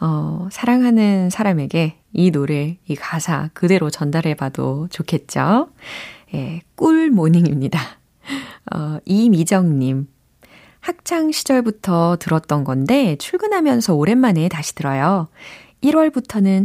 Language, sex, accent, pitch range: Korean, female, native, 150-205 Hz